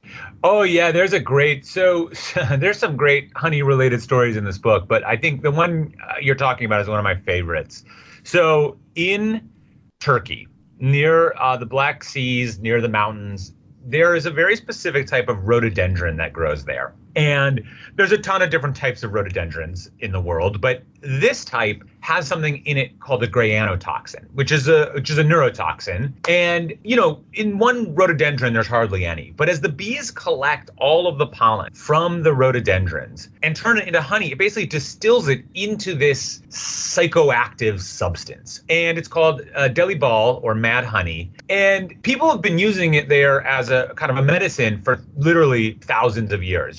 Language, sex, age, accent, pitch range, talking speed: English, male, 30-49, American, 110-165 Hz, 180 wpm